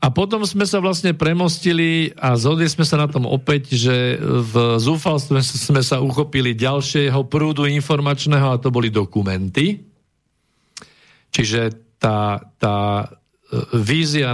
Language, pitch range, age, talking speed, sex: Slovak, 120-150 Hz, 50-69, 125 wpm, male